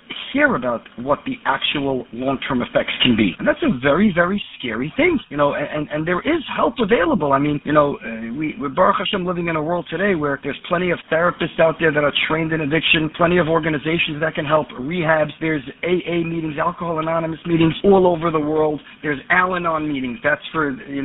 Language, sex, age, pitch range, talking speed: English, male, 50-69, 155-230 Hz, 210 wpm